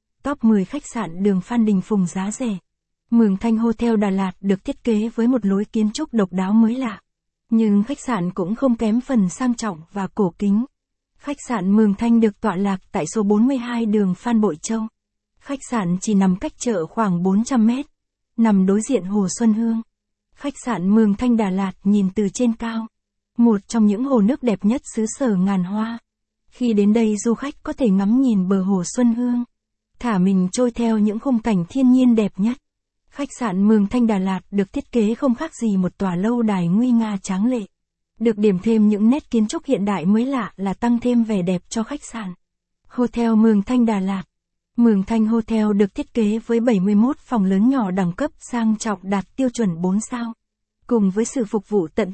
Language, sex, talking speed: Vietnamese, female, 210 wpm